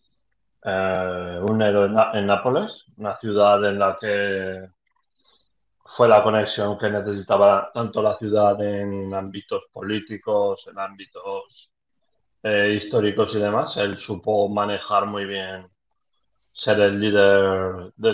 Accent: Spanish